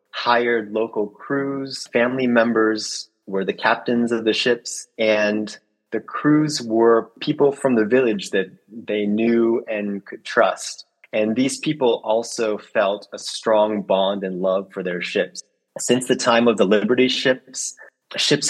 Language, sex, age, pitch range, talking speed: English, male, 30-49, 105-125 Hz, 150 wpm